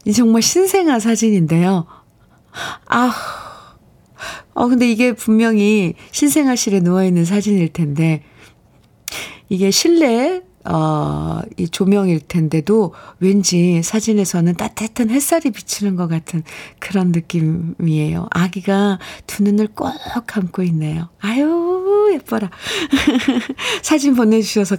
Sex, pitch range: female, 170-230 Hz